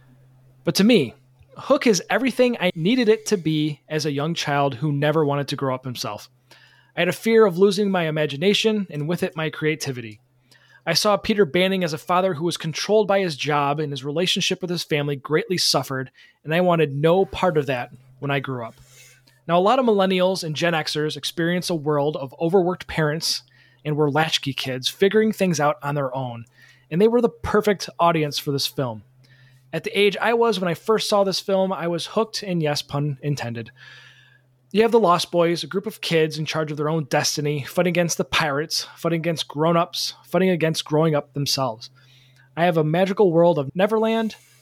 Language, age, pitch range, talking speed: English, 20-39, 140-185 Hz, 205 wpm